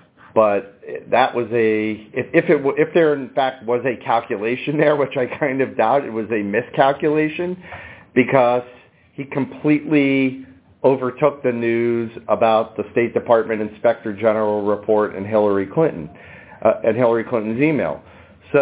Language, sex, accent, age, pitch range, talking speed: English, male, American, 40-59, 105-140 Hz, 145 wpm